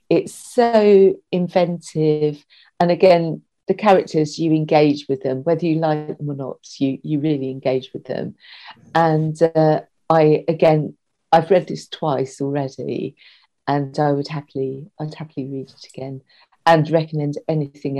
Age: 50-69